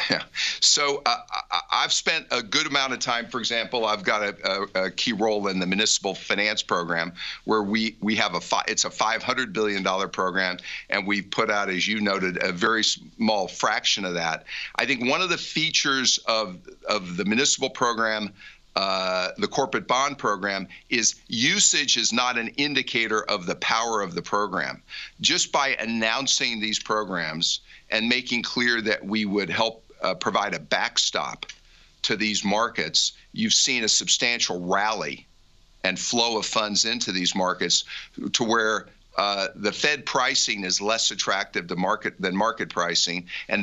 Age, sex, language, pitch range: 50-69, male, English, 95-120 Hz